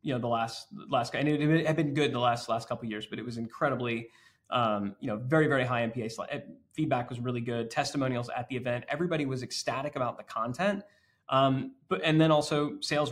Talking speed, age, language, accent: 225 wpm, 30-49, English, American